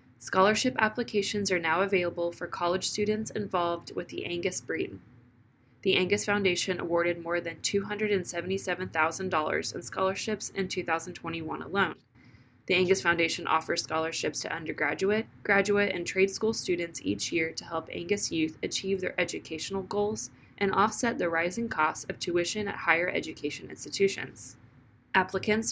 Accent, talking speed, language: American, 140 wpm, English